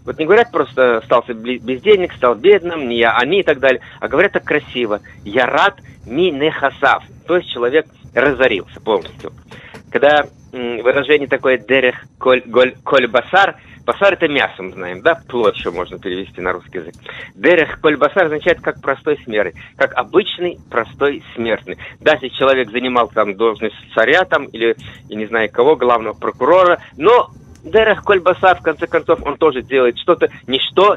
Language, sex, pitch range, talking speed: Russian, male, 120-155 Hz, 170 wpm